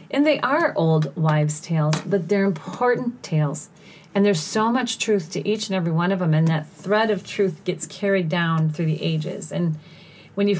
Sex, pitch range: female, 160-200 Hz